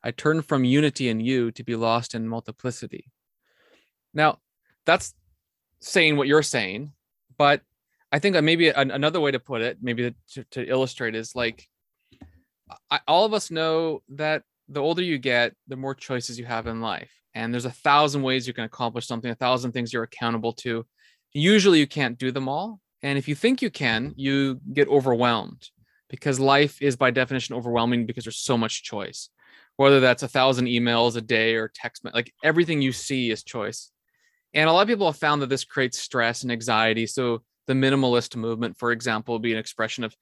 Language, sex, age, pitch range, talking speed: English, male, 20-39, 115-145 Hz, 195 wpm